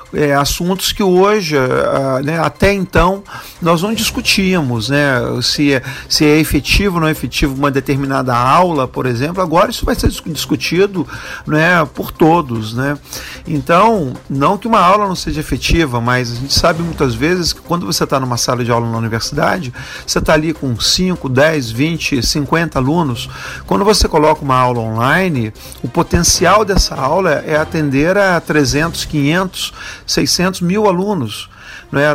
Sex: male